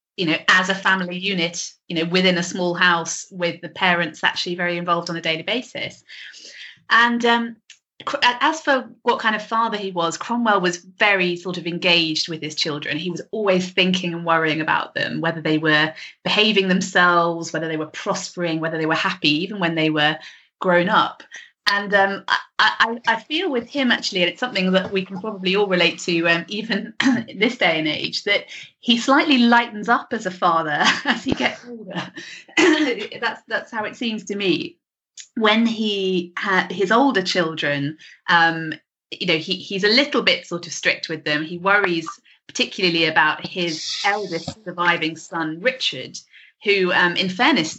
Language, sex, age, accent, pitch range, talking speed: English, female, 30-49, British, 165-215 Hz, 180 wpm